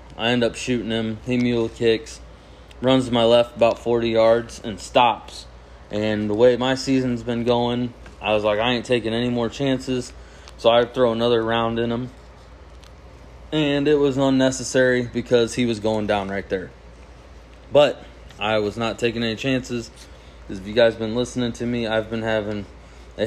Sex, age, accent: male, 20-39, American